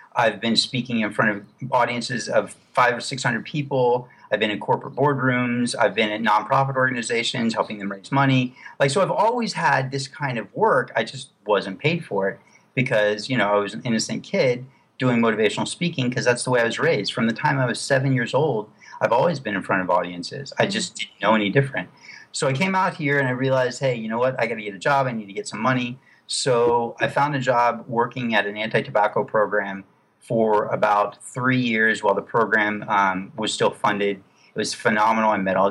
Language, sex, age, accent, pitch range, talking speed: English, male, 40-59, American, 105-130 Hz, 220 wpm